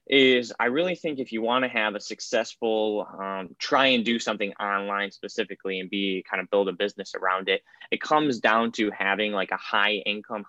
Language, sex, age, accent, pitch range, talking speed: English, male, 10-29, American, 100-120 Hz, 205 wpm